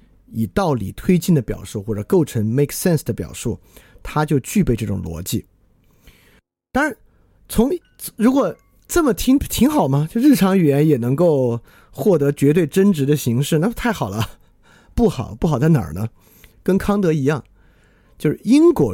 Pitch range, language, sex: 110-185 Hz, Chinese, male